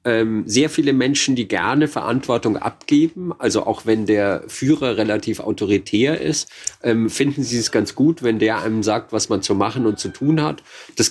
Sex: male